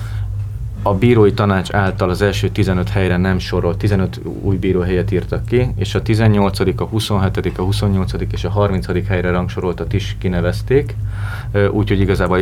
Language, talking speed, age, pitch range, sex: Hungarian, 155 wpm, 30-49, 90-105 Hz, male